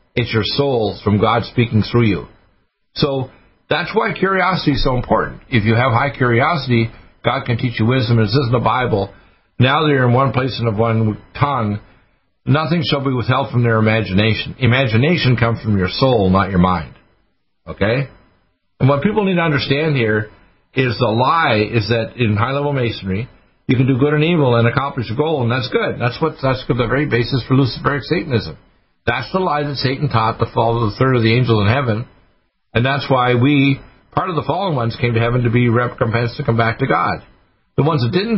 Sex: male